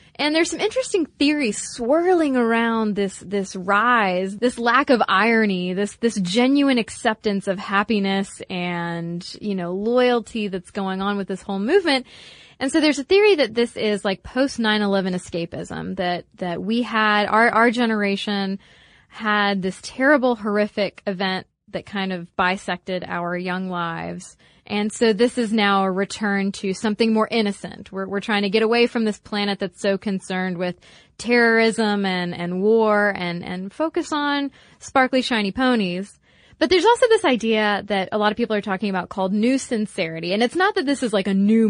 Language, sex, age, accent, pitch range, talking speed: English, female, 20-39, American, 195-240 Hz, 175 wpm